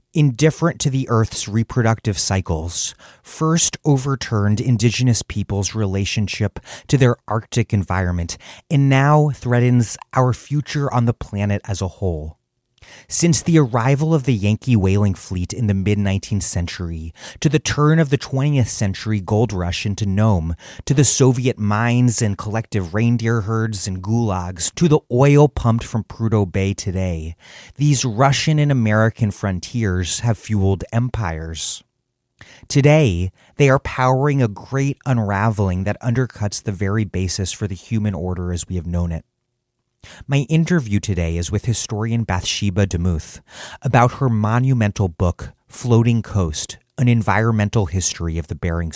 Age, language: 30-49, English